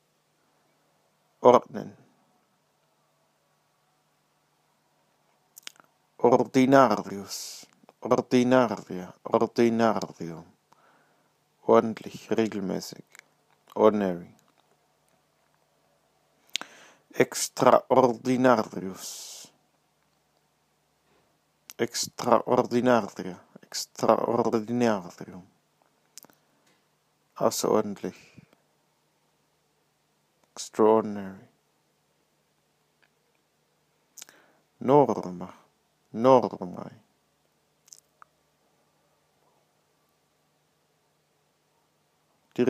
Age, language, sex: 50-69, English, male